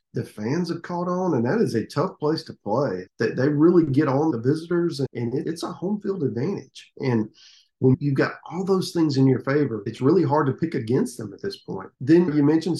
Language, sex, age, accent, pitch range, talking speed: English, male, 40-59, American, 115-150 Hz, 225 wpm